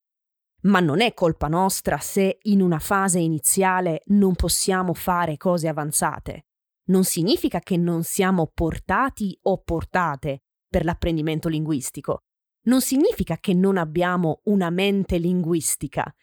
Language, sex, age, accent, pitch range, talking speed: Italian, female, 20-39, native, 165-215 Hz, 125 wpm